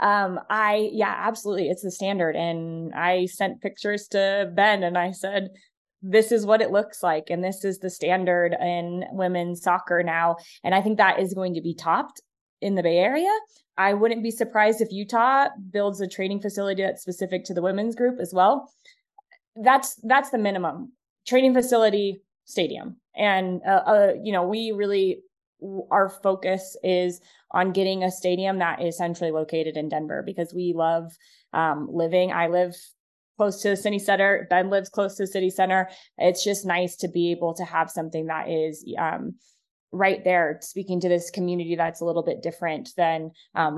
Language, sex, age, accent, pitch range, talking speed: English, female, 20-39, American, 175-205 Hz, 180 wpm